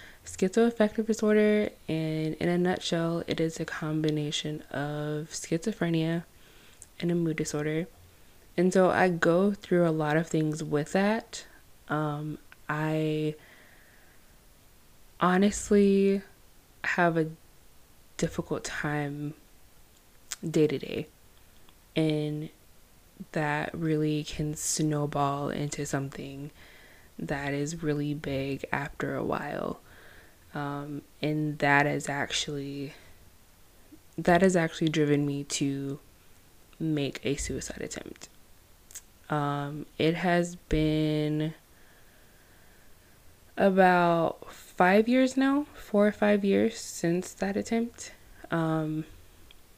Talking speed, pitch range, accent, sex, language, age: 95 wpm, 145-185 Hz, American, female, English, 20-39